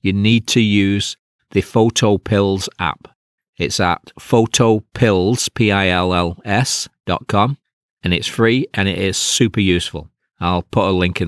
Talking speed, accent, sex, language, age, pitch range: 120 wpm, British, male, English, 40-59, 90-110 Hz